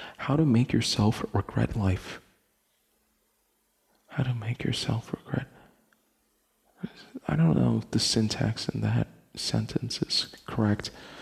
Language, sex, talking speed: English, male, 120 wpm